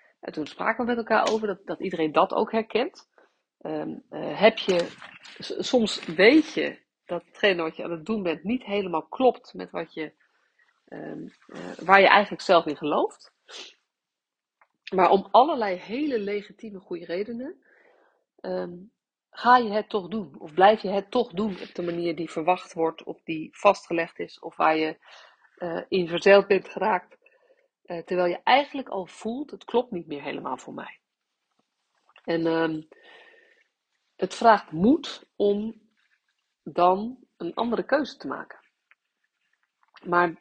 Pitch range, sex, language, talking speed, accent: 175-240 Hz, female, Dutch, 155 wpm, Dutch